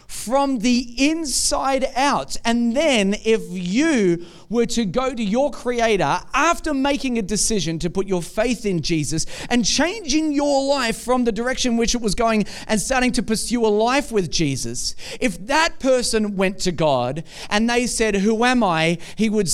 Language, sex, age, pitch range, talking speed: English, male, 40-59, 195-265 Hz, 175 wpm